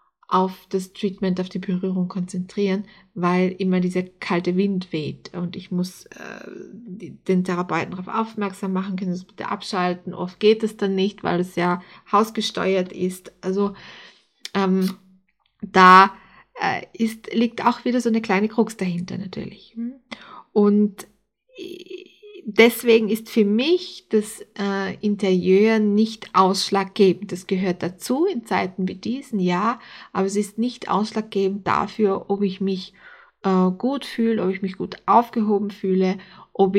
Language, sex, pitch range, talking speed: German, female, 185-220 Hz, 145 wpm